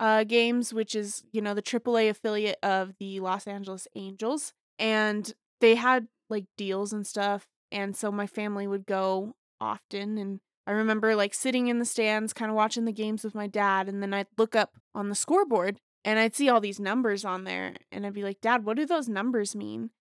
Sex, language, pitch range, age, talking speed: female, English, 200-220 Hz, 20-39, 215 wpm